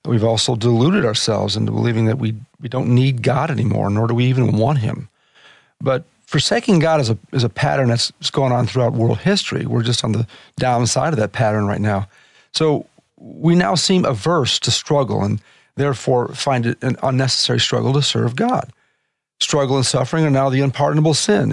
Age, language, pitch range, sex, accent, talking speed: 40-59, English, 120-155 Hz, male, American, 190 wpm